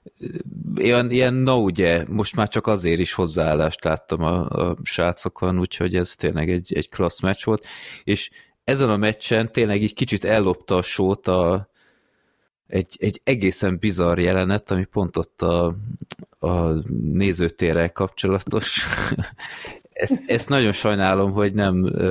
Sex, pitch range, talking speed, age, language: male, 90-115 Hz, 135 wpm, 20-39, Hungarian